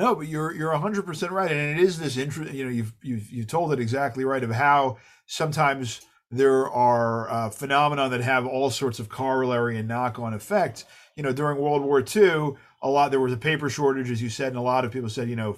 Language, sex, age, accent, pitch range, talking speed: English, male, 40-59, American, 110-145 Hz, 235 wpm